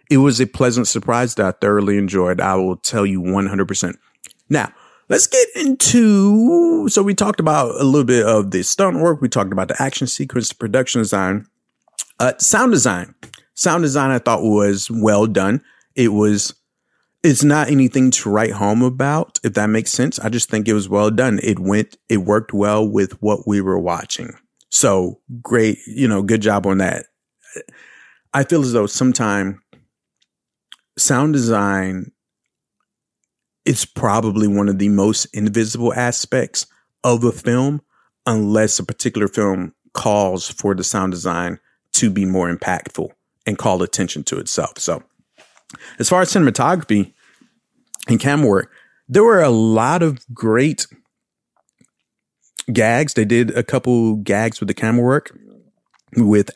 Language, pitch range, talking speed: English, 100-135 Hz, 155 wpm